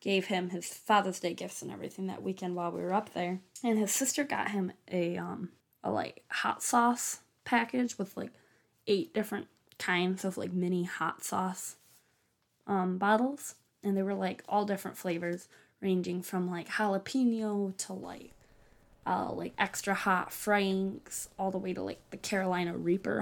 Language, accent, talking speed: English, American, 170 wpm